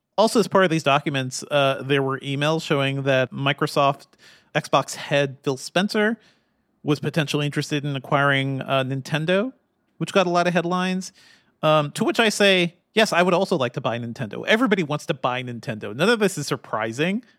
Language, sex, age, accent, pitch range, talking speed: English, male, 40-59, American, 135-175 Hz, 185 wpm